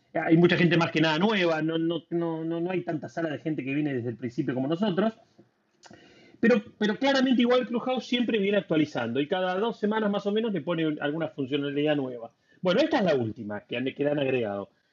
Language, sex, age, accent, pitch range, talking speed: Spanish, male, 30-49, Argentinian, 145-195 Hz, 220 wpm